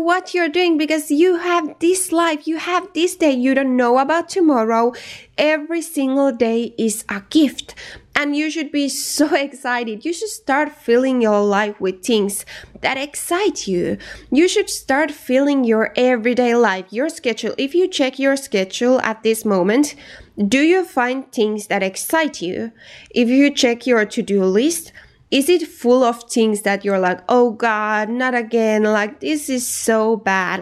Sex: female